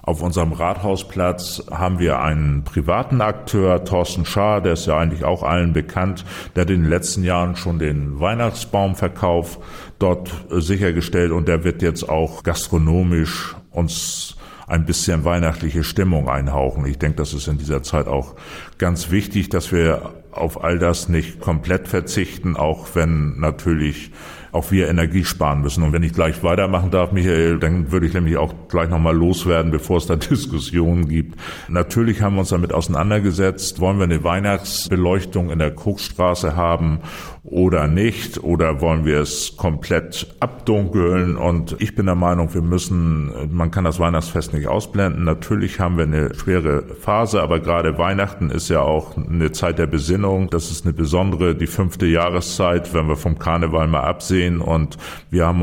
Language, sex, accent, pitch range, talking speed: German, male, German, 80-90 Hz, 165 wpm